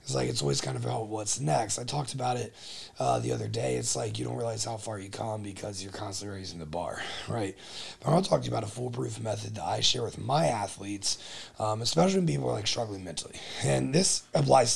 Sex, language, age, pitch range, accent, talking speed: male, English, 30-49, 80-125 Hz, American, 240 wpm